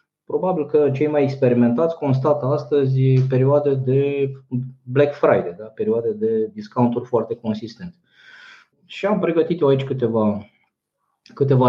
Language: Romanian